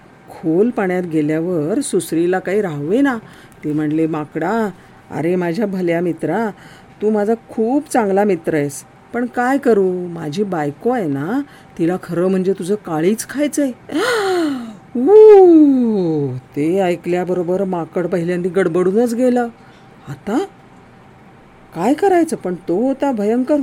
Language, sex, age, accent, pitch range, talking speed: Marathi, female, 50-69, native, 175-265 Hz, 75 wpm